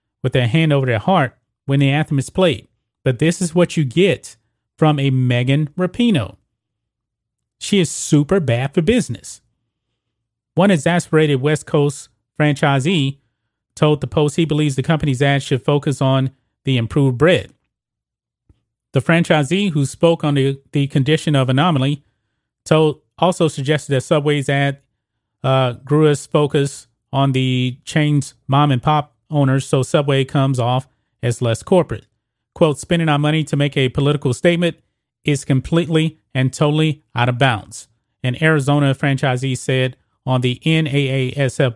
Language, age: English, 30-49